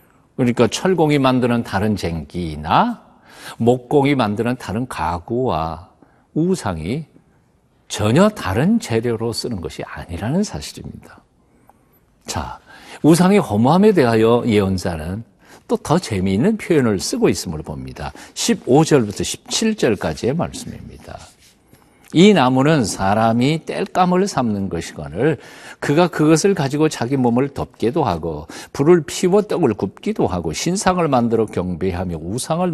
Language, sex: Korean, male